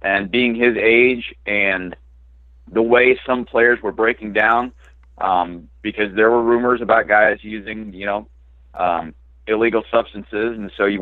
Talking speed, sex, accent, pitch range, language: 150 wpm, male, American, 95-125 Hz, English